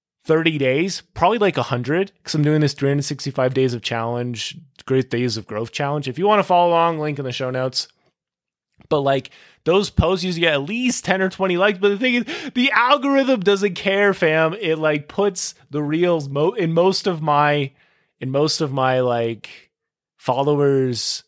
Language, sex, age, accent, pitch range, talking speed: English, male, 20-39, American, 130-175 Hz, 185 wpm